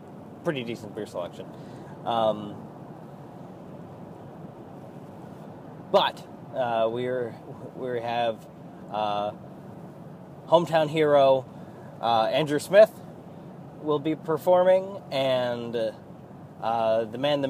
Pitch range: 115-165 Hz